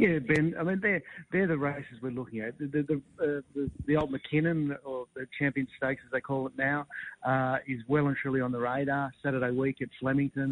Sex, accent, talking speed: male, Australian, 220 wpm